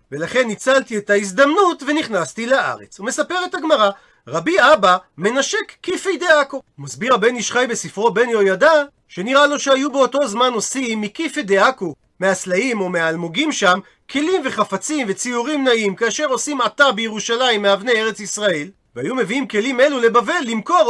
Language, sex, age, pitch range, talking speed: Hebrew, male, 40-59, 210-285 Hz, 140 wpm